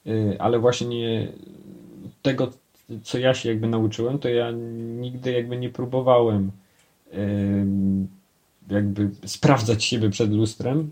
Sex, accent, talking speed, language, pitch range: male, native, 105 wpm, Polish, 100-125 Hz